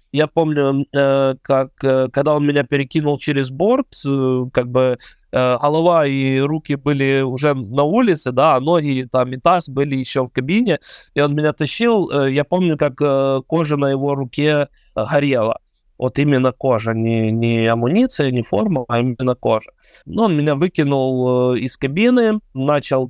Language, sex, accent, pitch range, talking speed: Russian, male, native, 130-150 Hz, 145 wpm